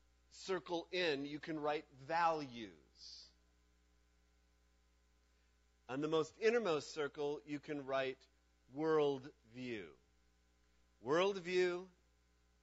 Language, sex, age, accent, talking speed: English, male, 50-69, American, 80 wpm